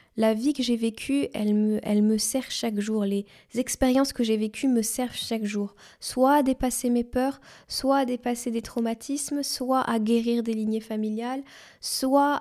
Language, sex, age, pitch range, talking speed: French, female, 10-29, 210-245 Hz, 185 wpm